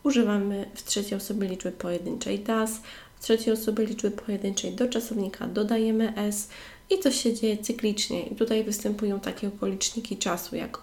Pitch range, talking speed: 195-235 Hz, 155 wpm